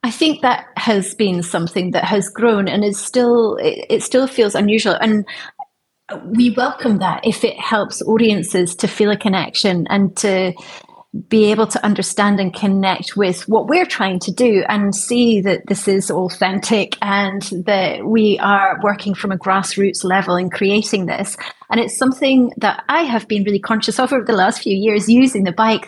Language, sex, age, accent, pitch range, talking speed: English, female, 30-49, British, 195-235 Hz, 180 wpm